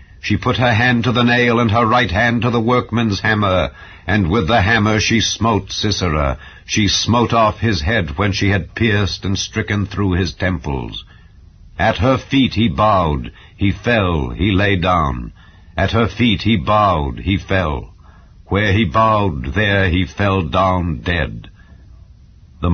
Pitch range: 95-120 Hz